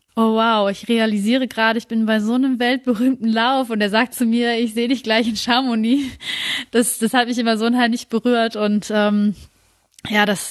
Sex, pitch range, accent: female, 210-245 Hz, German